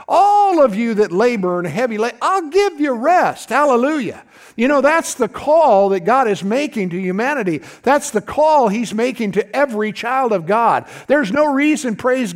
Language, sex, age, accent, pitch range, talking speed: English, male, 50-69, American, 205-270 Hz, 185 wpm